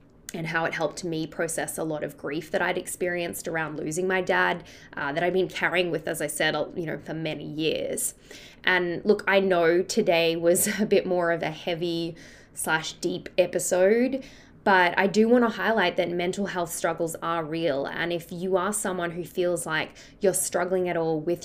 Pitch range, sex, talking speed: 170-195 Hz, female, 200 wpm